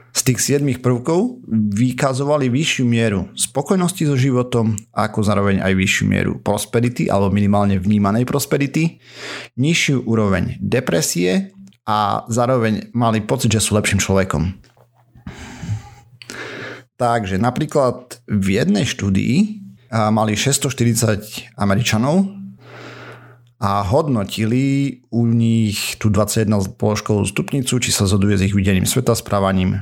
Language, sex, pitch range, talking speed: Slovak, male, 100-125 Hz, 110 wpm